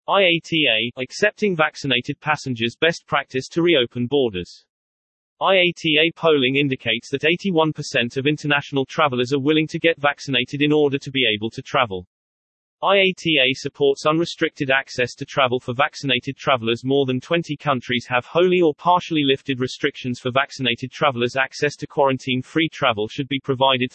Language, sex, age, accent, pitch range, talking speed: English, male, 30-49, British, 125-155 Hz, 145 wpm